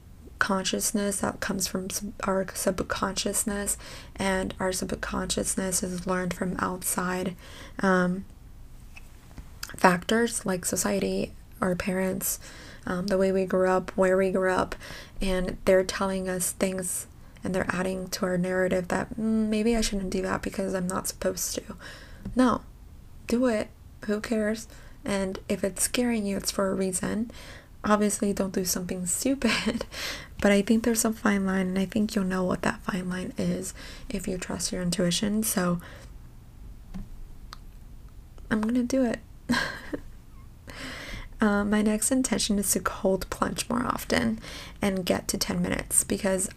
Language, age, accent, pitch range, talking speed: English, 20-39, American, 185-210 Hz, 150 wpm